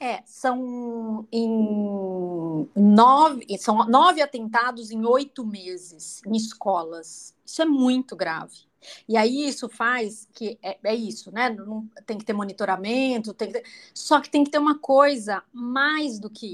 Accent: Brazilian